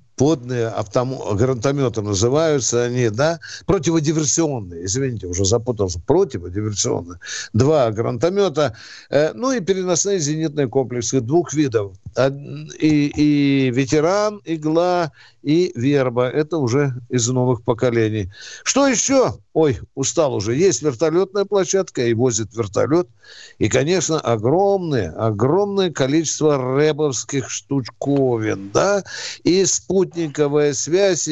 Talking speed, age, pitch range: 100 wpm, 60-79, 120-170 Hz